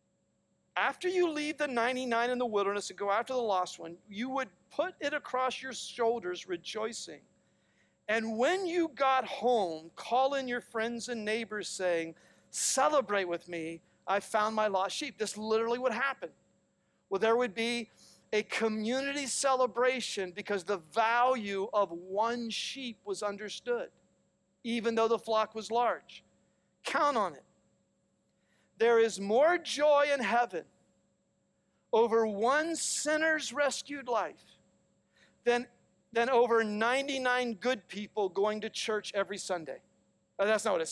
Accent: American